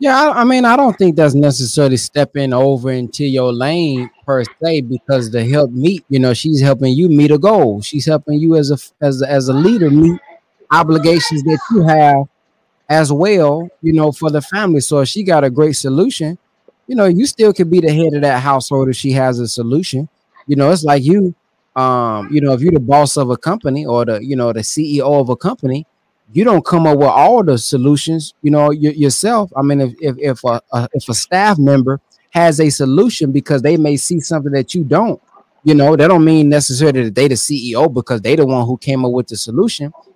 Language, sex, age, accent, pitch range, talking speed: English, male, 20-39, American, 135-165 Hz, 225 wpm